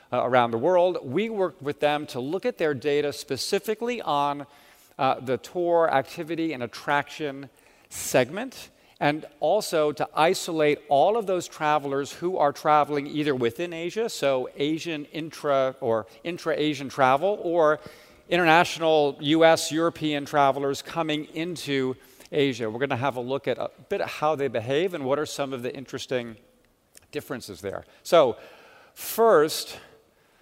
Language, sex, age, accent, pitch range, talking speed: English, male, 50-69, American, 130-155 Hz, 145 wpm